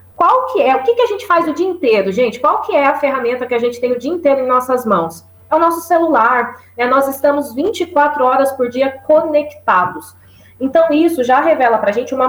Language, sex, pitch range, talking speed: Portuguese, female, 225-300 Hz, 225 wpm